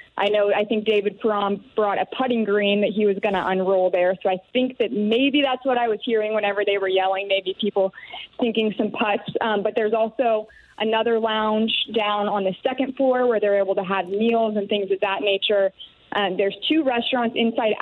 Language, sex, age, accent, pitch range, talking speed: English, female, 20-39, American, 200-230 Hz, 210 wpm